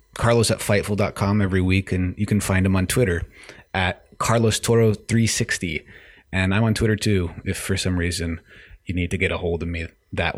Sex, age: male, 30-49